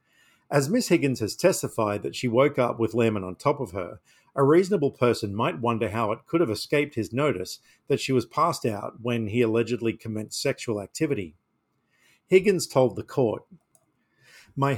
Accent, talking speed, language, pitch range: Australian, 175 wpm, English, 110-140 Hz